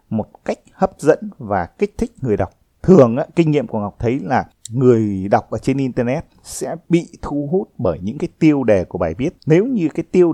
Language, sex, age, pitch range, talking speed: Vietnamese, male, 20-39, 105-160 Hz, 215 wpm